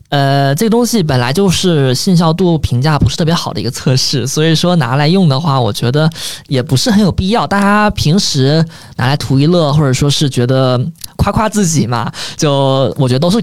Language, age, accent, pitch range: Chinese, 20-39, native, 135-180 Hz